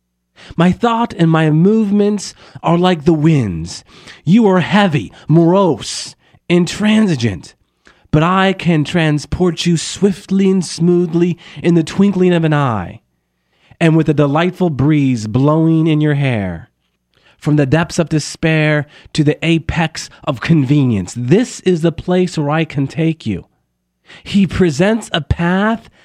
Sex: male